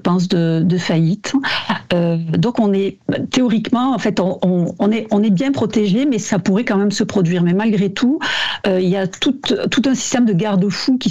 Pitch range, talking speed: 180-215 Hz, 220 wpm